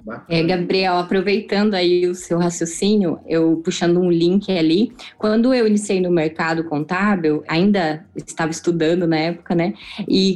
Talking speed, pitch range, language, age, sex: 145 wpm, 175-210 Hz, Portuguese, 20-39, female